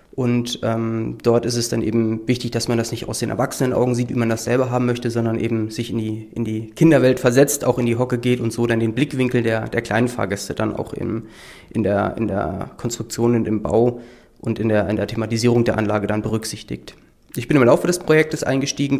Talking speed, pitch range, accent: 235 wpm, 115-130 Hz, German